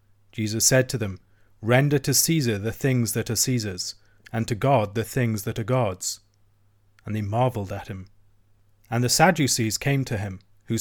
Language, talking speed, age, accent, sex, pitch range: English, 180 wpm, 40-59, British, male, 105-135 Hz